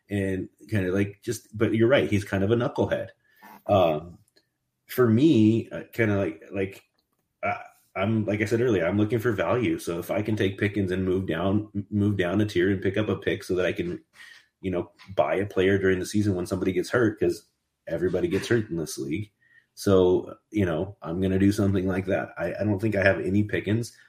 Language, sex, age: English, male, 30-49